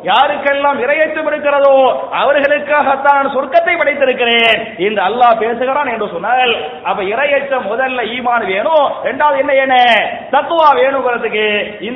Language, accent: English, Indian